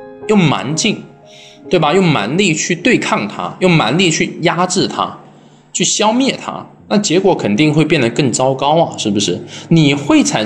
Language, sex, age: Chinese, male, 20-39